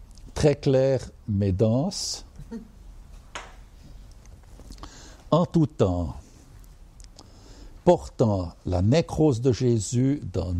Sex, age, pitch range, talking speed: male, 60-79, 95-140 Hz, 75 wpm